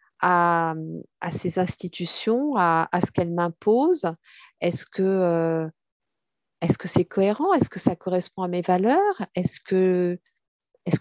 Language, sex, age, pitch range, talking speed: French, female, 50-69, 165-210 Hz, 140 wpm